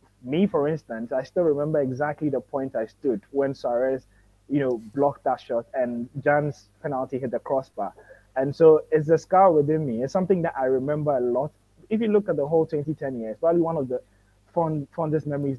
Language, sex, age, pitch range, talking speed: English, male, 20-39, 120-160 Hz, 205 wpm